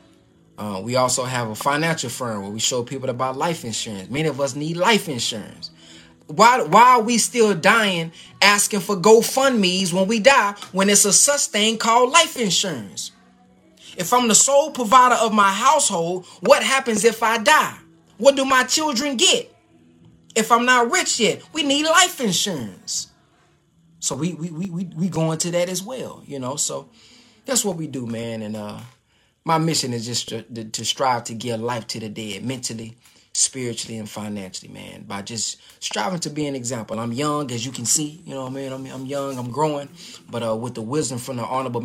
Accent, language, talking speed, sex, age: American, English, 195 wpm, male, 20-39